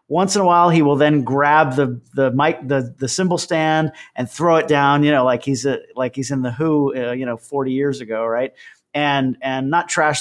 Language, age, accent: English, 40-59, American